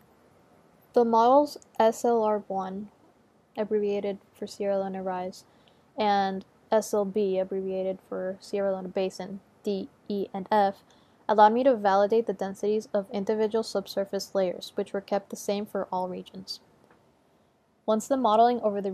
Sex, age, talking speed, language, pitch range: female, 10-29, 135 wpm, English, 195-220 Hz